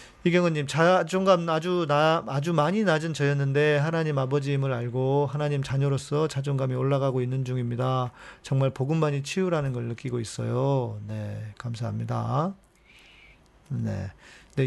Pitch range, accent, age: 125-155 Hz, native, 40-59